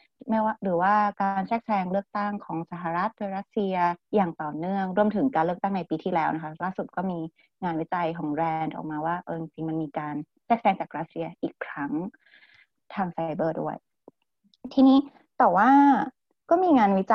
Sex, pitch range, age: female, 170-225 Hz, 20-39